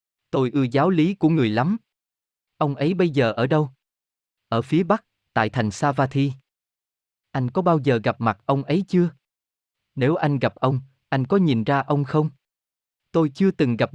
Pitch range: 115-160 Hz